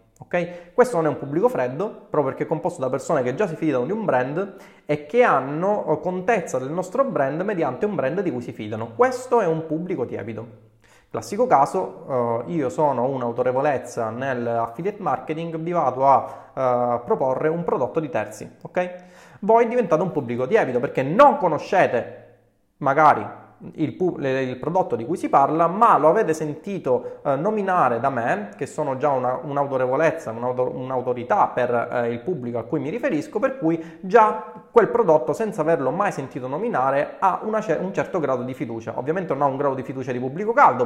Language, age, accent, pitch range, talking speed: Italian, 20-39, native, 125-180 Hz, 185 wpm